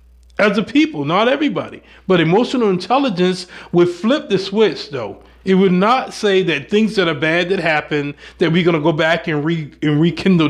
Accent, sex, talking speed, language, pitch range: American, male, 195 wpm, English, 150-215 Hz